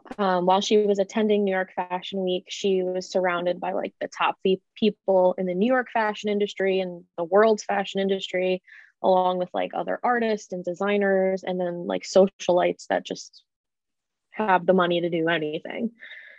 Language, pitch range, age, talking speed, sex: English, 185-215 Hz, 20-39, 170 wpm, female